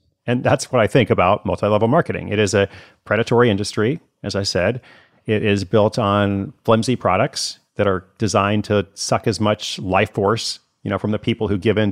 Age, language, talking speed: 40-59, English, 200 wpm